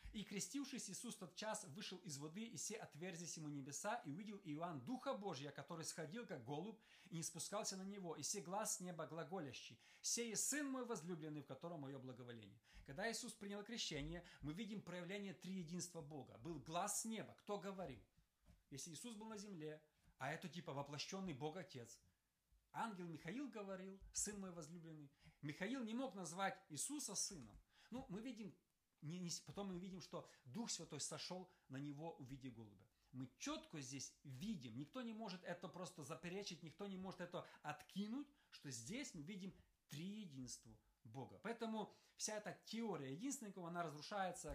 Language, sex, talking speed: Russian, male, 165 wpm